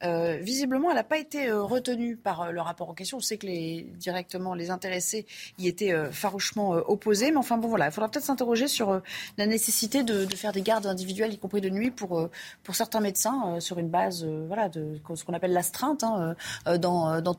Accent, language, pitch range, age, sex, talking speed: French, French, 175-245 Hz, 30-49, female, 240 wpm